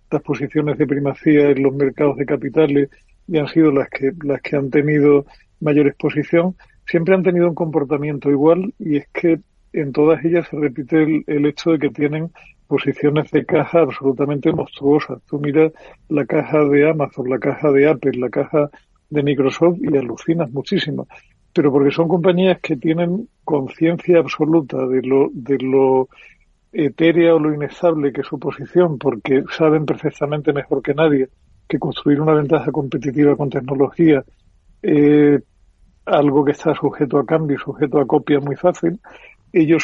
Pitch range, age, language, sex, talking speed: 140-160 Hz, 50-69, Spanish, male, 165 wpm